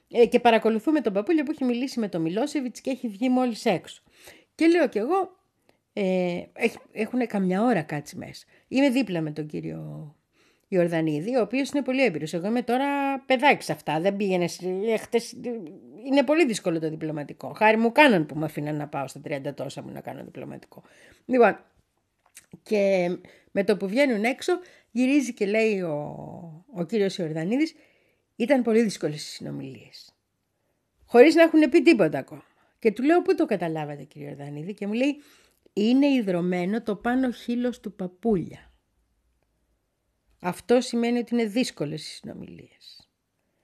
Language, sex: Greek, female